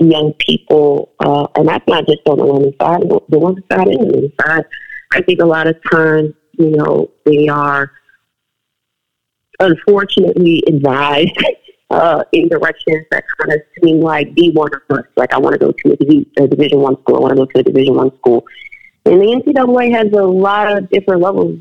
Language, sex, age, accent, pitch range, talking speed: English, female, 40-59, American, 155-190 Hz, 200 wpm